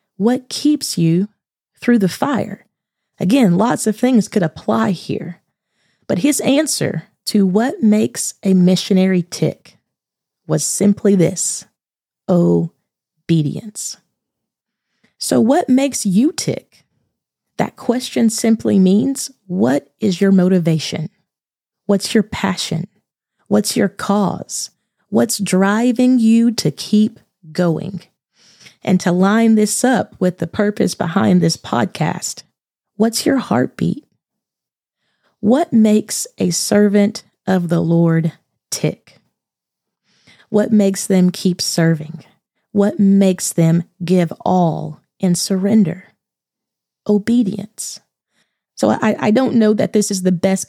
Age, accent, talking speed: 30-49, American, 115 wpm